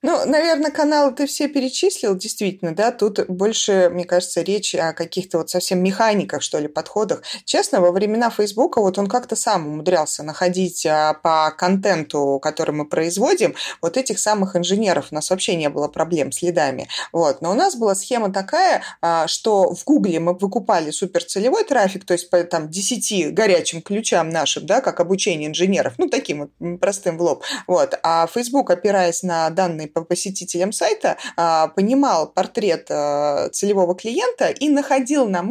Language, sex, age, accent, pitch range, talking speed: Russian, female, 30-49, native, 175-220 Hz, 160 wpm